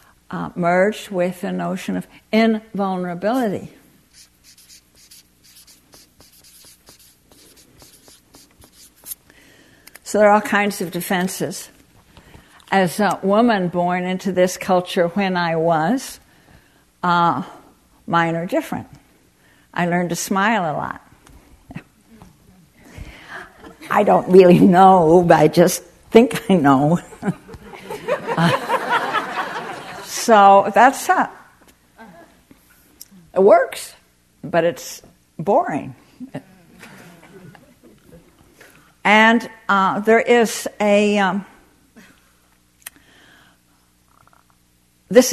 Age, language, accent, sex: 60-79, English, American, female